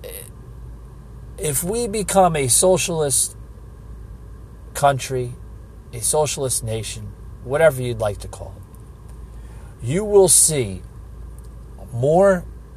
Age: 40-59